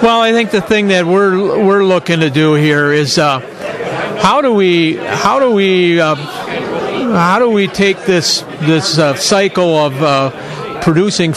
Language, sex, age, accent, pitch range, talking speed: English, male, 50-69, American, 140-175 Hz, 170 wpm